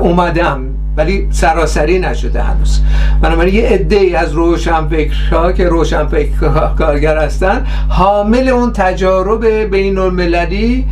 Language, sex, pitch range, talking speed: Persian, male, 155-200 Hz, 105 wpm